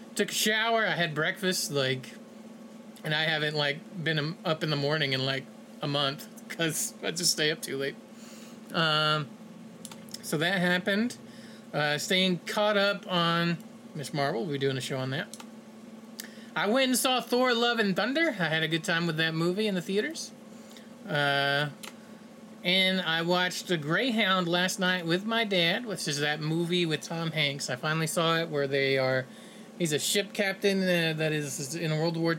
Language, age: English, 30-49